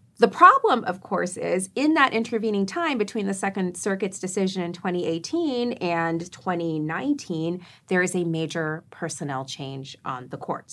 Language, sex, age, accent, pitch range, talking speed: English, female, 30-49, American, 170-235 Hz, 150 wpm